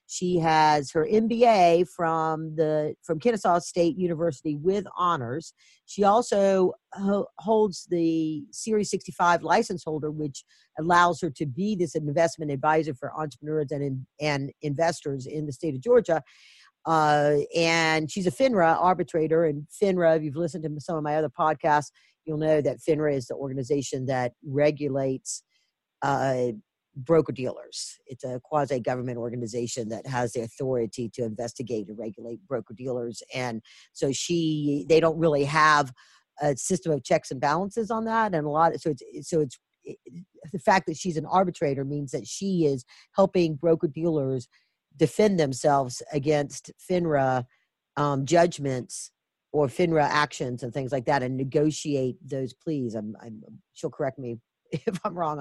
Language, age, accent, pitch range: English, 50-69, American, 135-170 Hz